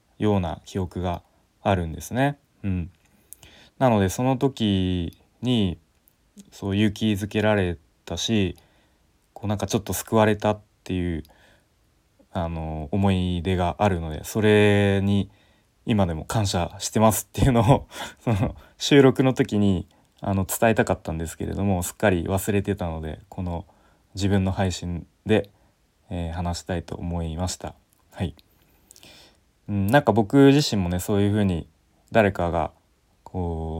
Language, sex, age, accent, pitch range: Japanese, male, 20-39, native, 90-105 Hz